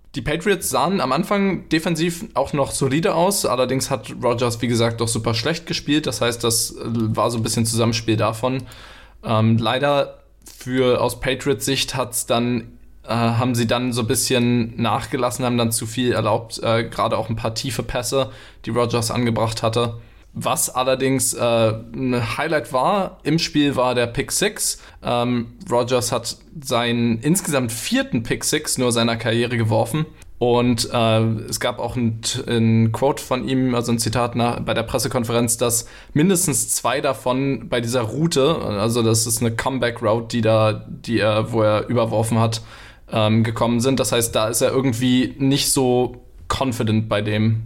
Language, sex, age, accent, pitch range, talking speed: German, male, 20-39, German, 115-130 Hz, 165 wpm